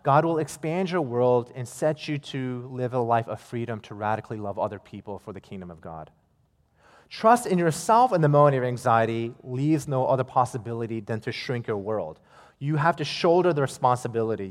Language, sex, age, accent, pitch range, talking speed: English, male, 30-49, American, 110-150 Hz, 195 wpm